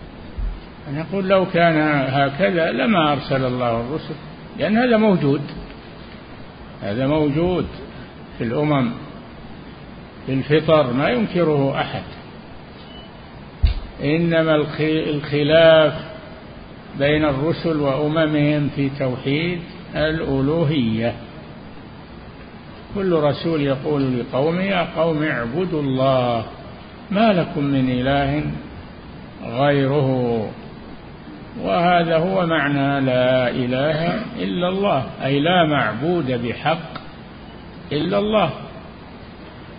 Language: Arabic